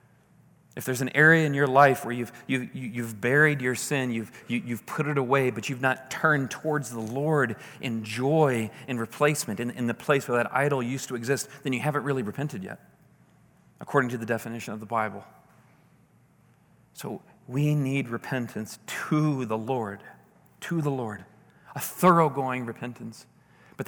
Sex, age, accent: male, 40-59, American